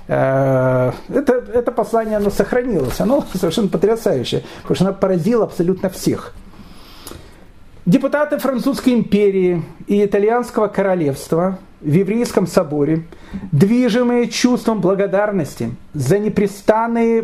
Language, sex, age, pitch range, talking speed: Russian, male, 40-59, 185-240 Hz, 95 wpm